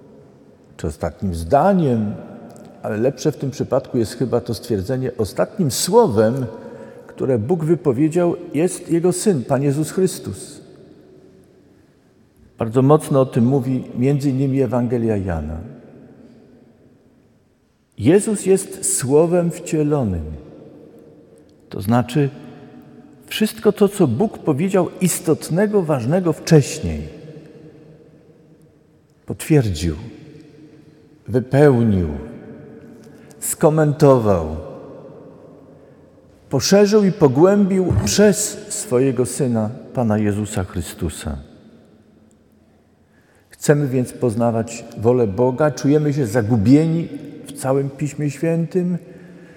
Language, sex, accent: Polish, male, native